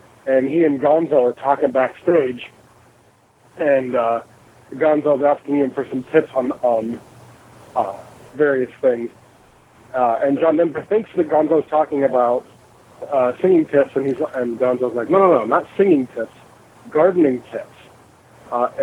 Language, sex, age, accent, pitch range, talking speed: English, male, 40-59, American, 125-160 Hz, 145 wpm